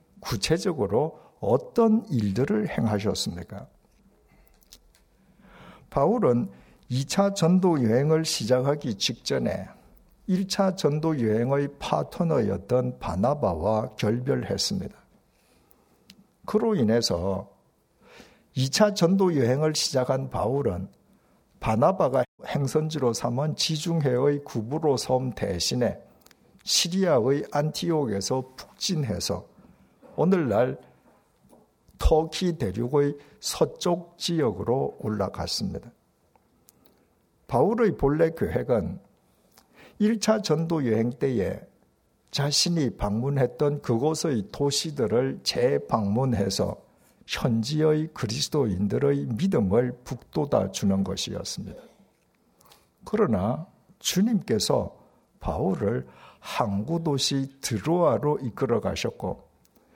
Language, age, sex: Korean, 50-69, male